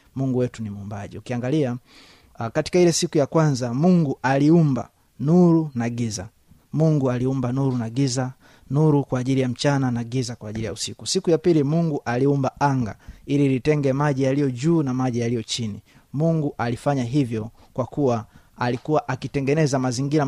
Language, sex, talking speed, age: Swahili, male, 160 wpm, 30-49